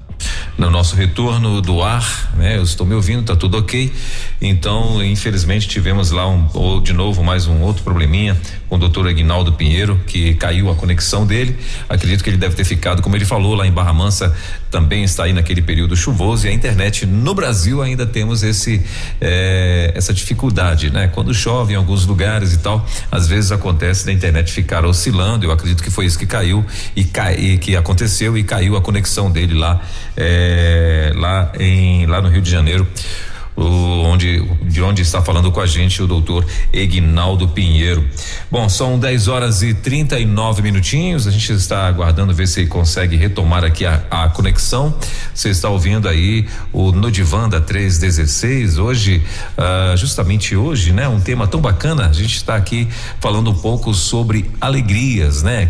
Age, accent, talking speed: 40-59, Brazilian, 175 wpm